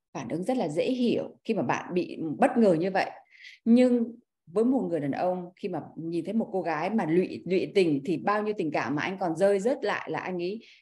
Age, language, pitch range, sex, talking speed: 20-39, Vietnamese, 185-260 Hz, female, 250 wpm